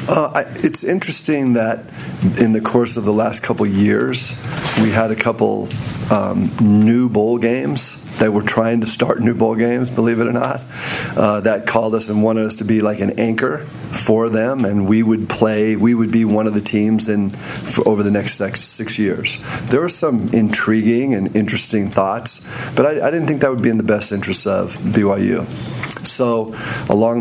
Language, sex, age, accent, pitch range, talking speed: English, male, 40-59, American, 105-115 Hz, 195 wpm